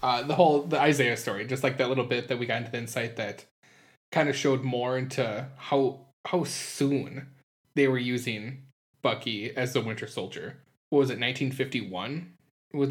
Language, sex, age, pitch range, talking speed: English, male, 20-39, 125-140 Hz, 190 wpm